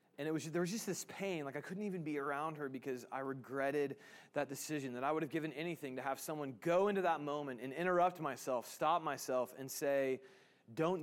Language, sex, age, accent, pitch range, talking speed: English, male, 30-49, American, 135-180 Hz, 210 wpm